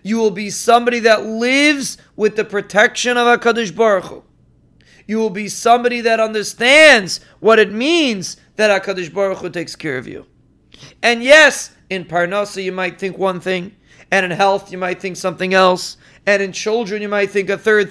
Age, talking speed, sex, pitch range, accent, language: 30-49, 185 wpm, male, 195-235 Hz, American, English